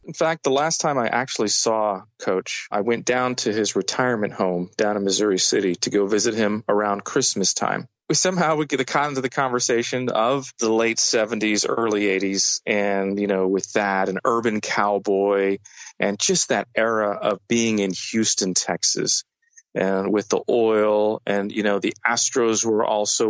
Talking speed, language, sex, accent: 180 wpm, English, male, American